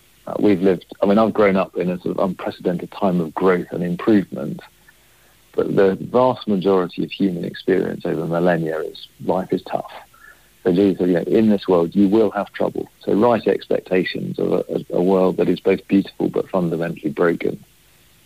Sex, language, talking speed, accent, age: male, English, 180 wpm, British, 50-69